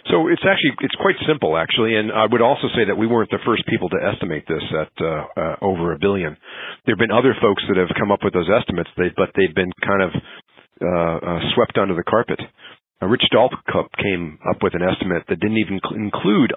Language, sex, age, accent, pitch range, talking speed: English, male, 40-59, American, 90-110 Hz, 230 wpm